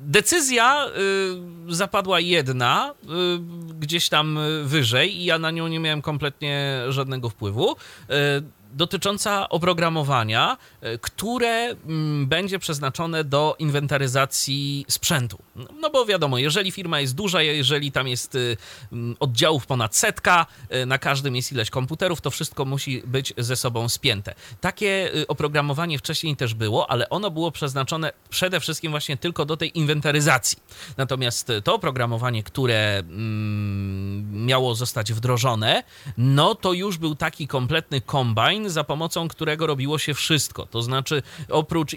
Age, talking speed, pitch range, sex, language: 30-49, 125 wpm, 130-160 Hz, male, Polish